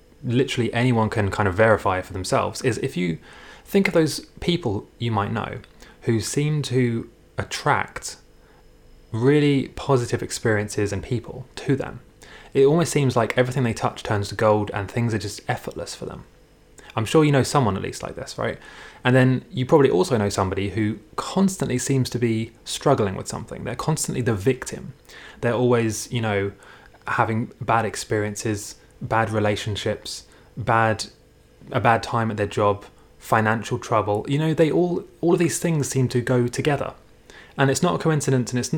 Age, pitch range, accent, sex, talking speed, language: 20-39, 105-130 Hz, British, male, 175 wpm, English